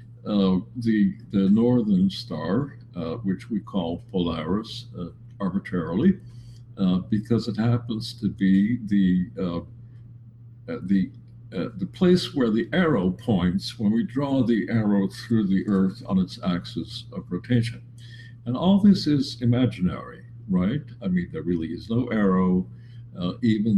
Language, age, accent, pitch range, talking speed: English, 60-79, American, 100-125 Hz, 140 wpm